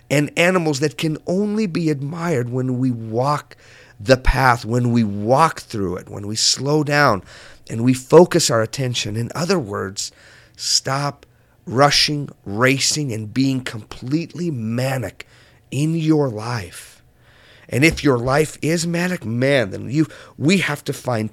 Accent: American